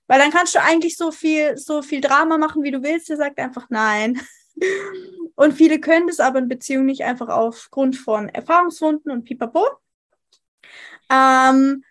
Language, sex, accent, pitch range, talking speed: English, female, German, 260-310 Hz, 165 wpm